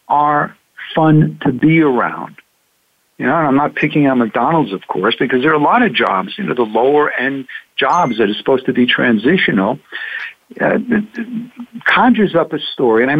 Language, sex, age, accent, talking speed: English, male, 60-79, American, 185 wpm